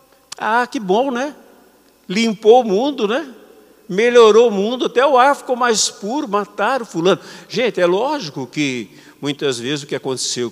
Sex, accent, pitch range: male, Brazilian, 185-290 Hz